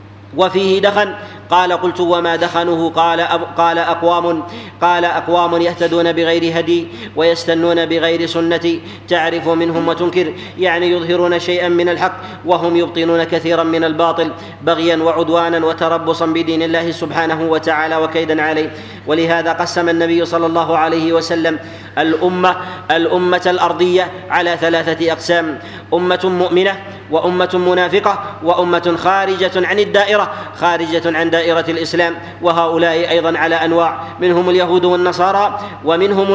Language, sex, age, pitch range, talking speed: Arabic, male, 40-59, 165-180 Hz, 120 wpm